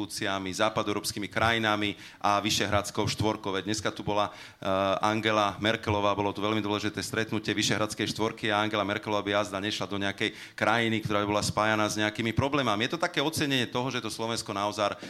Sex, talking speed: male, 165 wpm